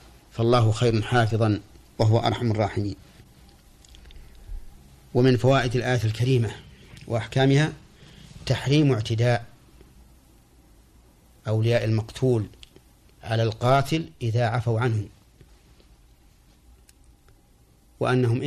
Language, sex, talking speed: Arabic, male, 70 wpm